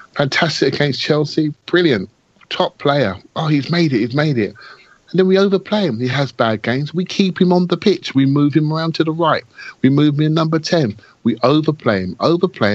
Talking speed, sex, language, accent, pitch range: 210 wpm, male, English, British, 110-150 Hz